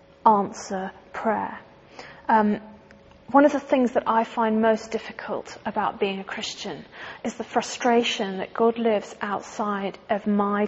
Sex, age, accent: female, 30-49, British